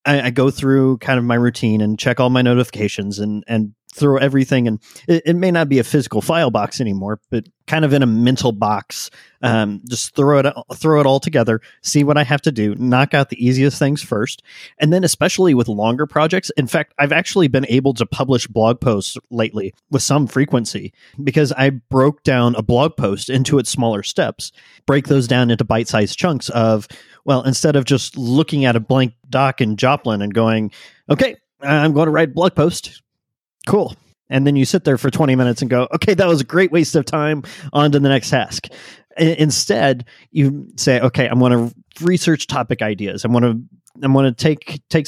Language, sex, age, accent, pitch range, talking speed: English, male, 30-49, American, 120-145 Hz, 205 wpm